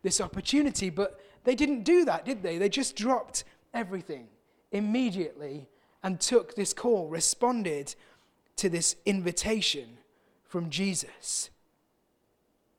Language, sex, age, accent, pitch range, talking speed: English, male, 30-49, British, 175-230 Hz, 115 wpm